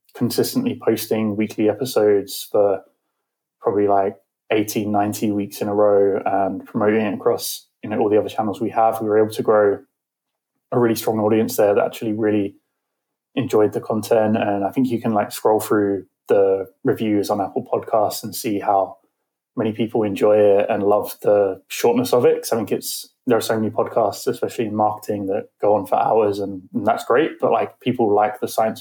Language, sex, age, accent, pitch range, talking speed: English, male, 20-39, British, 105-120 Hz, 195 wpm